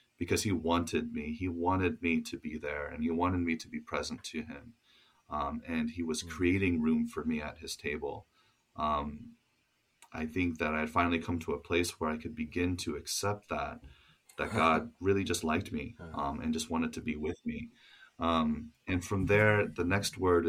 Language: English